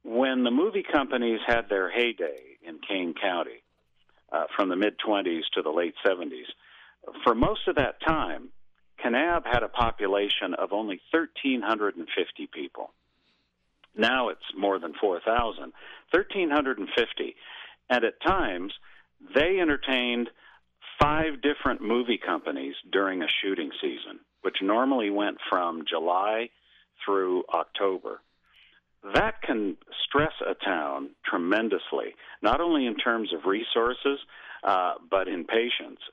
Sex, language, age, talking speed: male, English, 50-69, 120 wpm